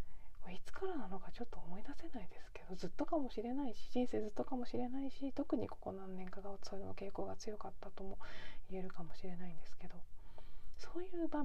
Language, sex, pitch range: Japanese, female, 180-240 Hz